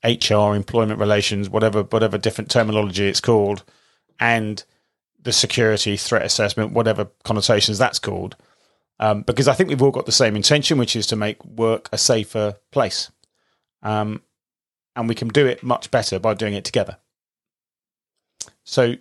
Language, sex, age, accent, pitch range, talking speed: English, male, 30-49, British, 105-130 Hz, 155 wpm